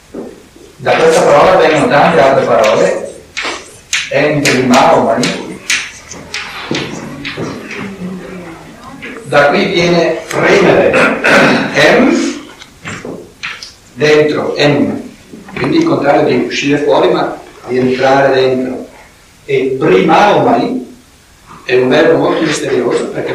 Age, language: 60-79, Italian